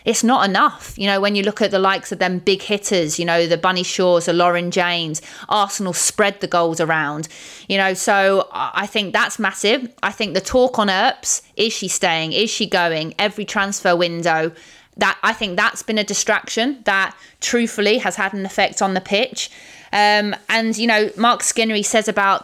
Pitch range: 180-210 Hz